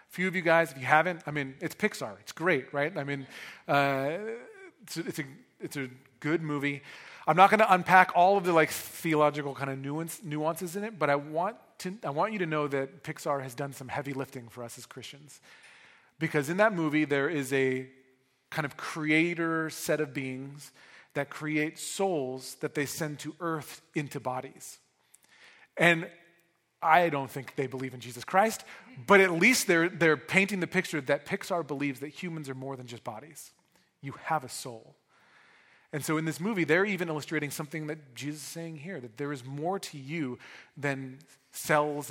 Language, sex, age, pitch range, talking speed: English, male, 40-59, 135-165 Hz, 195 wpm